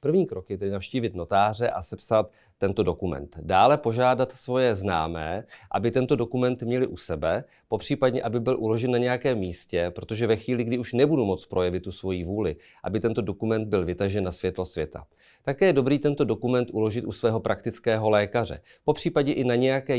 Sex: male